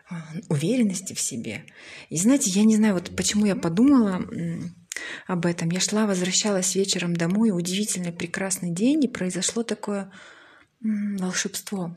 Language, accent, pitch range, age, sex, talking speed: Ukrainian, native, 175-210 Hz, 20-39, female, 130 wpm